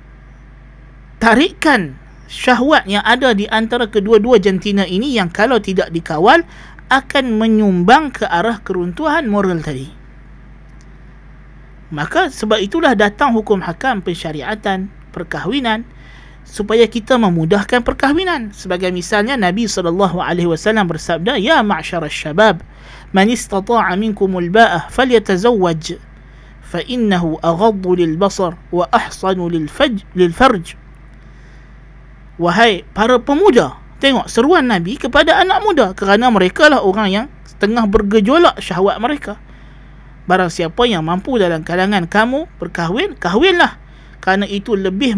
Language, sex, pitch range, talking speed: Malay, male, 175-235 Hz, 110 wpm